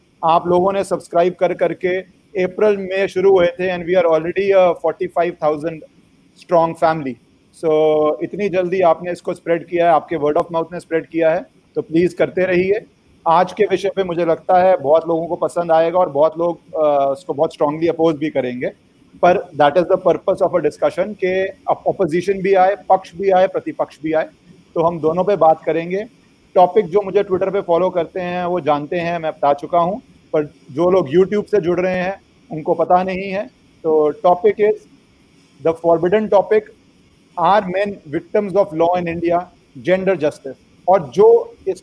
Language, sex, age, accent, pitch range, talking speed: Hindi, male, 30-49, native, 165-190 Hz, 180 wpm